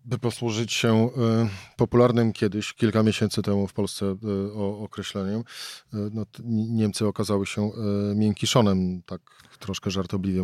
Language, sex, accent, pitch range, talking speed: Polish, male, native, 105-130 Hz, 105 wpm